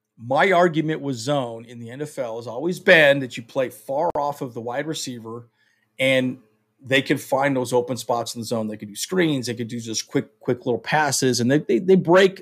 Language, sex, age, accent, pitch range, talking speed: English, male, 40-59, American, 125-160 Hz, 220 wpm